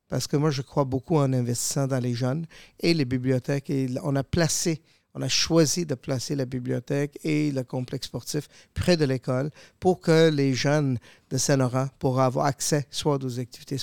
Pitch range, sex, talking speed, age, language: 130-150 Hz, male, 190 wpm, 50-69, French